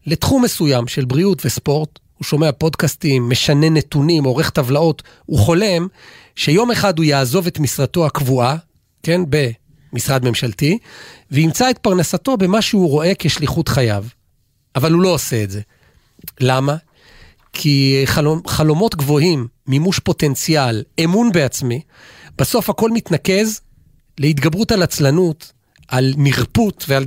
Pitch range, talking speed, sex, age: 135-175 Hz, 125 wpm, male, 40-59